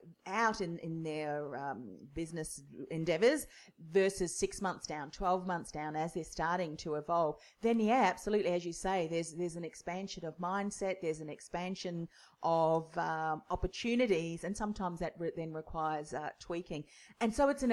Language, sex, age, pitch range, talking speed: English, female, 40-59, 165-205 Hz, 165 wpm